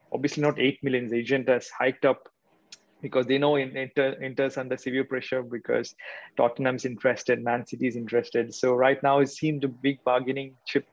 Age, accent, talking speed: 20-39, Indian, 175 wpm